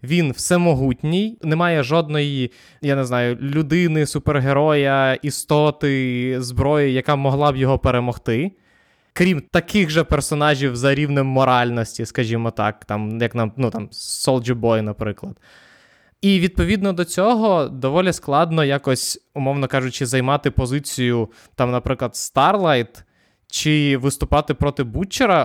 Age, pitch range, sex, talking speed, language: 20-39, 130-165 Hz, male, 125 wpm, Ukrainian